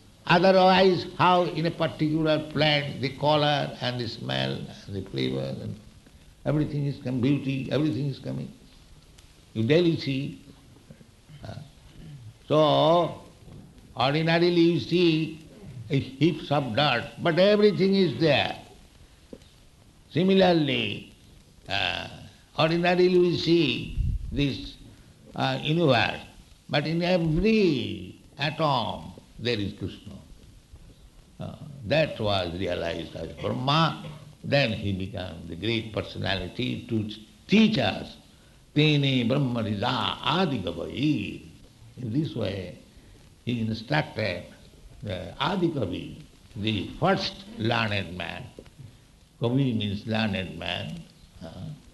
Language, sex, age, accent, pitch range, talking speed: English, male, 60-79, Indian, 100-155 Hz, 90 wpm